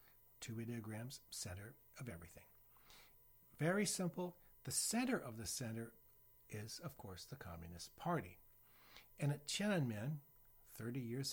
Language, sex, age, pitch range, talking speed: English, male, 60-79, 105-140 Hz, 120 wpm